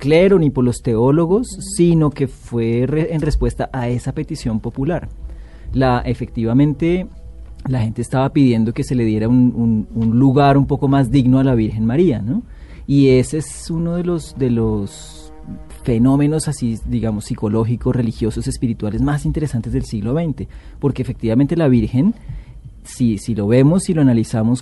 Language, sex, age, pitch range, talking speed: English, male, 30-49, 110-140 Hz, 170 wpm